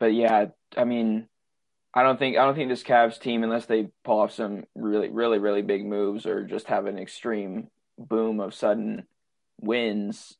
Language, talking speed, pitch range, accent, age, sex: English, 185 wpm, 110-130 Hz, American, 20-39, male